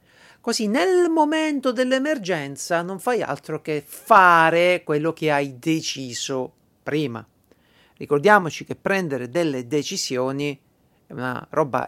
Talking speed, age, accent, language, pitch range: 110 wpm, 50-69, native, Italian, 145-215 Hz